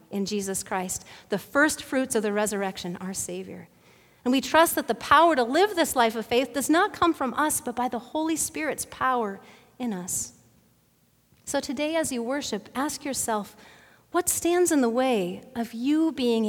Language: English